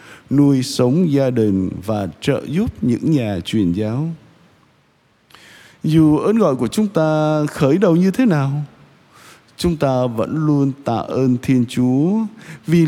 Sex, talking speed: male, 145 wpm